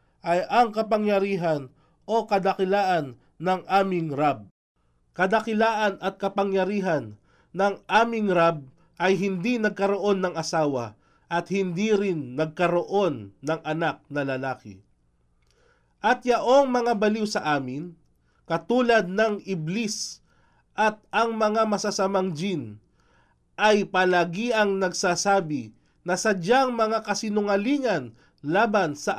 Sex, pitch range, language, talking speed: male, 165-220 Hz, Filipino, 105 wpm